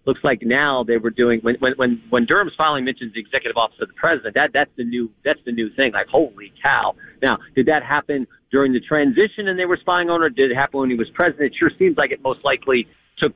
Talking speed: 260 wpm